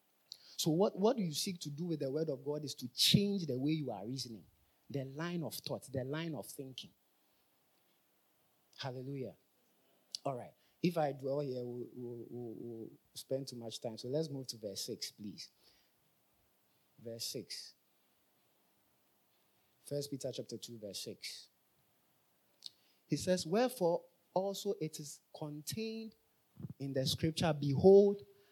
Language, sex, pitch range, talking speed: English, male, 130-170 Hz, 145 wpm